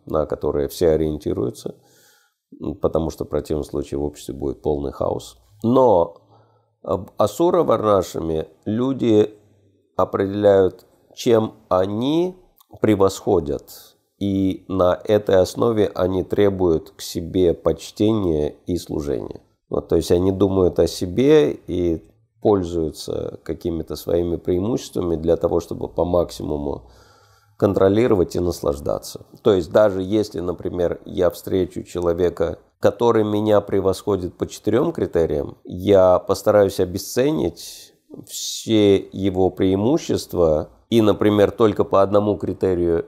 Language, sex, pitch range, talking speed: Russian, male, 90-105 Hz, 110 wpm